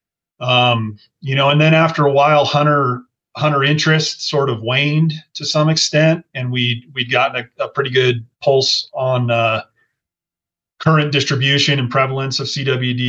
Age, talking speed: 30-49, 155 wpm